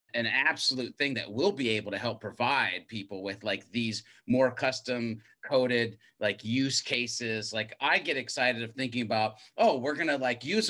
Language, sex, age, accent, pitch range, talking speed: English, male, 30-49, American, 115-150 Hz, 180 wpm